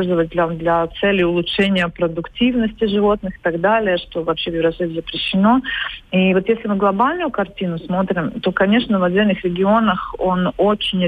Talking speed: 150 wpm